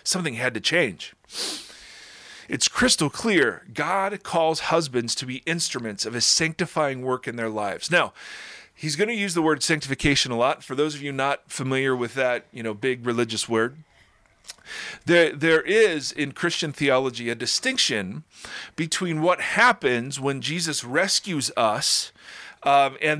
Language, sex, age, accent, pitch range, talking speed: English, male, 40-59, American, 125-165 Hz, 155 wpm